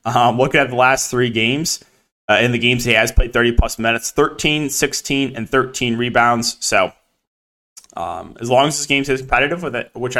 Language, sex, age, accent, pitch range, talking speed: English, male, 20-39, American, 120-160 Hz, 200 wpm